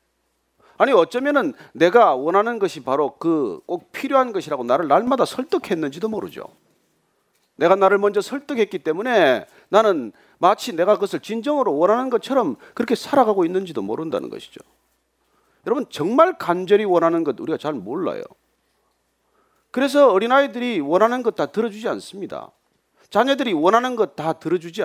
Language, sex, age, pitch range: Korean, male, 40-59, 185-285 Hz